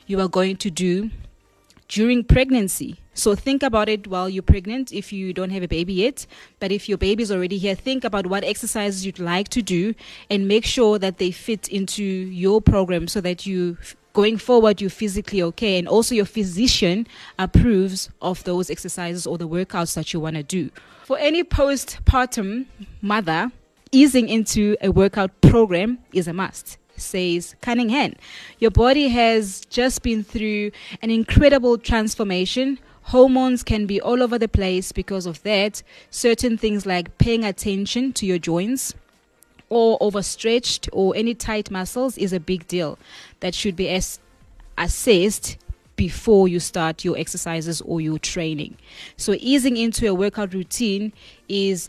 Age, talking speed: 20-39, 160 wpm